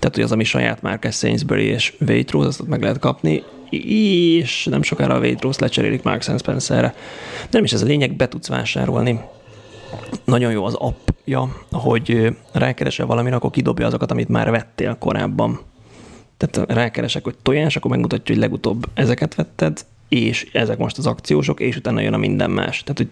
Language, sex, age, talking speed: Hungarian, male, 30-49, 170 wpm